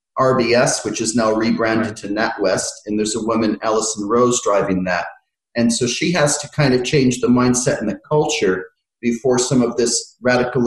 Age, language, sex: 40-59, English, male